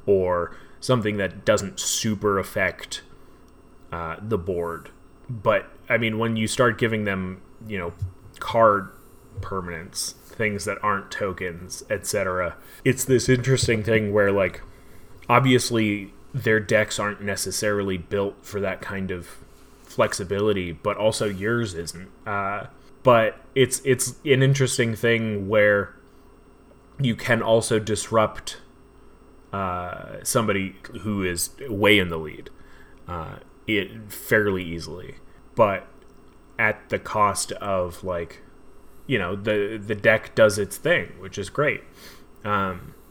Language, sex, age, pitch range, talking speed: English, male, 20-39, 100-125 Hz, 125 wpm